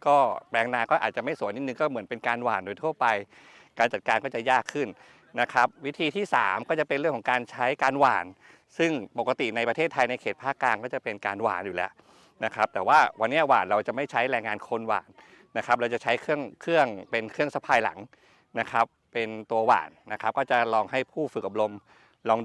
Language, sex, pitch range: Thai, male, 115-150 Hz